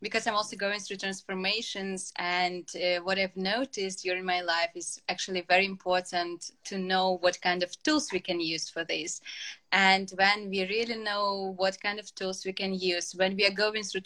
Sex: female